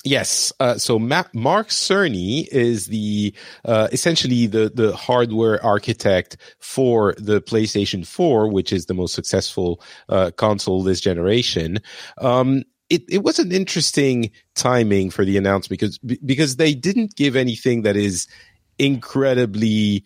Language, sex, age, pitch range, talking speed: English, male, 40-59, 100-130 Hz, 140 wpm